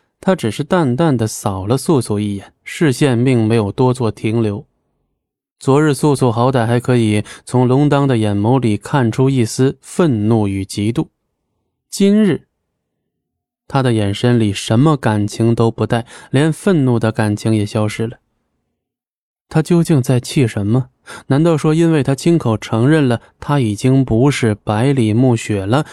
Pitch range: 110-145 Hz